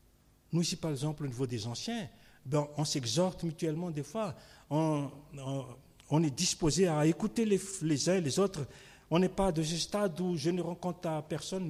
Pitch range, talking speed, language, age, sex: 130-180 Hz, 200 wpm, French, 50-69, male